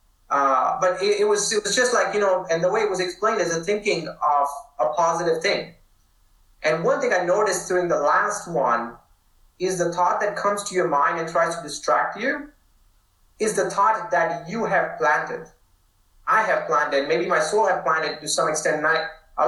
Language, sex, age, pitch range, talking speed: English, male, 30-49, 150-205 Hz, 205 wpm